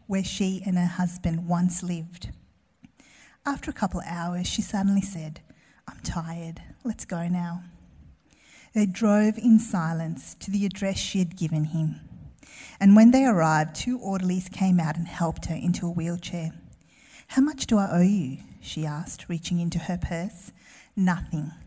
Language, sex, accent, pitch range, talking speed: English, female, Australian, 170-225 Hz, 160 wpm